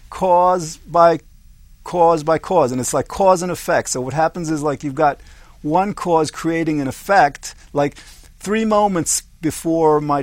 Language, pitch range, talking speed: English, 130-170 Hz, 165 wpm